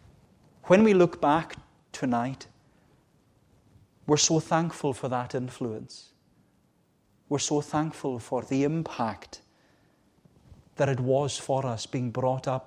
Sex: male